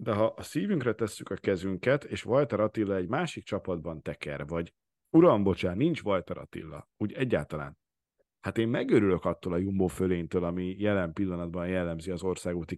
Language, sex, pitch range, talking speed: Hungarian, male, 95-125 Hz, 160 wpm